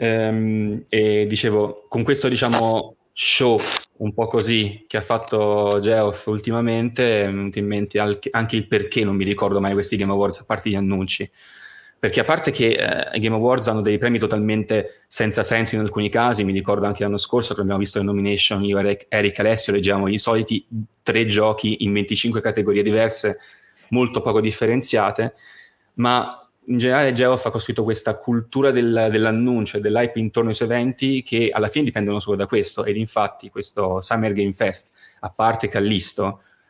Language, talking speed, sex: Italian, 170 wpm, male